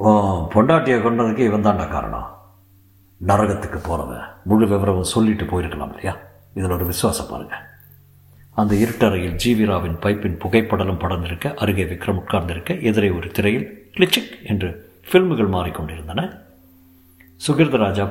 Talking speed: 115 wpm